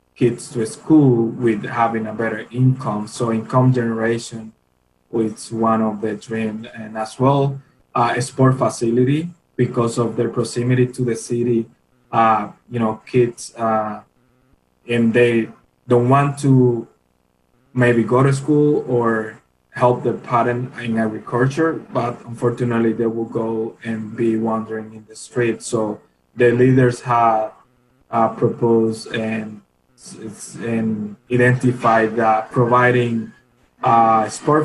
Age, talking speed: 20-39, 130 wpm